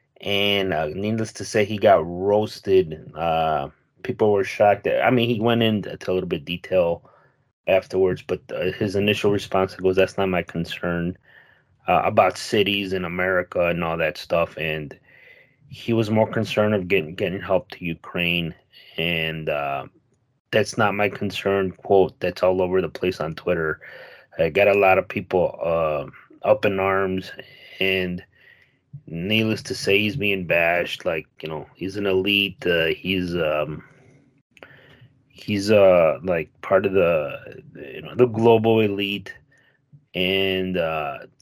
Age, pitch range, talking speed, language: 30-49, 90-110 Hz, 155 wpm, English